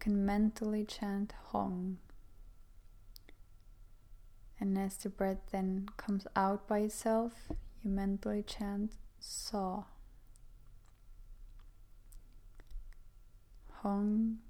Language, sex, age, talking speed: English, female, 20-39, 75 wpm